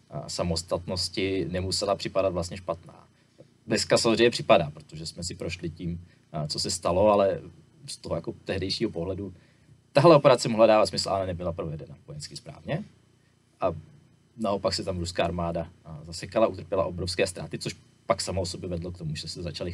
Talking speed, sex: 160 wpm, male